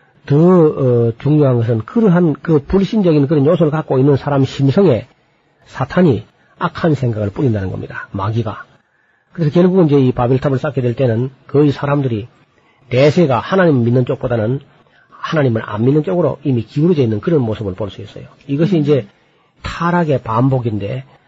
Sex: male